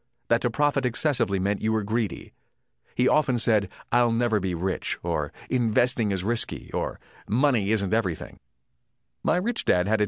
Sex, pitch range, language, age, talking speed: male, 100-125 Hz, English, 40-59, 165 wpm